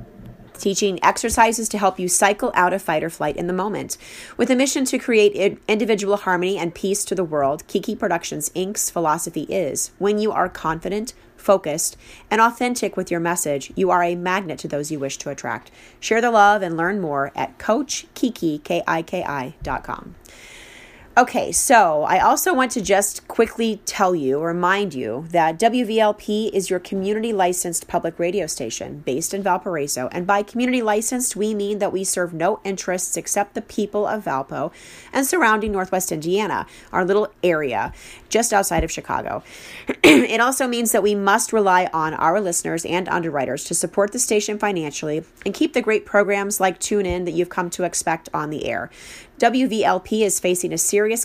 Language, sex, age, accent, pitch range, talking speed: English, female, 30-49, American, 170-215 Hz, 170 wpm